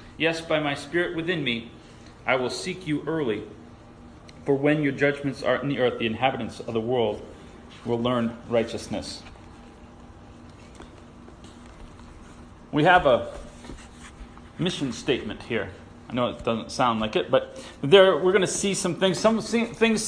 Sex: male